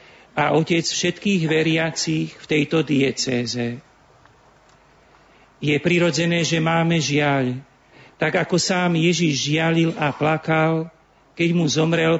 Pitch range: 150-170 Hz